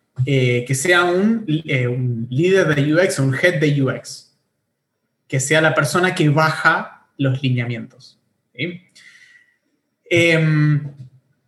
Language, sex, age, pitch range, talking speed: Spanish, male, 30-49, 130-195 Hz, 120 wpm